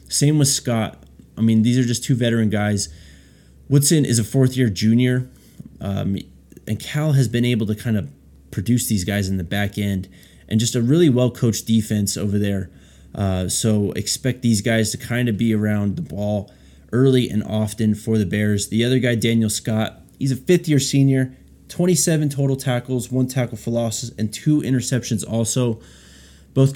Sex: male